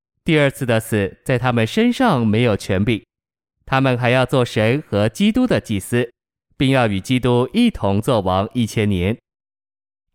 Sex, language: male, Chinese